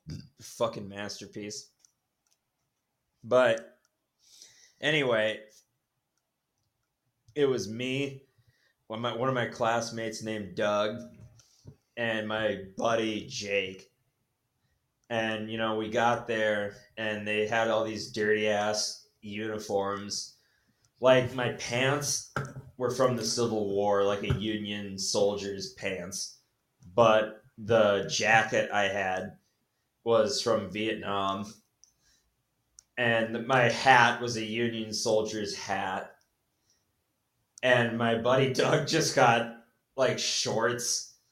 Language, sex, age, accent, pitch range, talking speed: English, male, 20-39, American, 105-125 Hz, 100 wpm